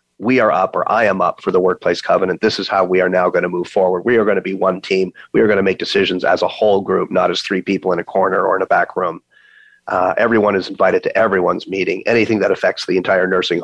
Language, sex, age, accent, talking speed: English, male, 40-59, American, 275 wpm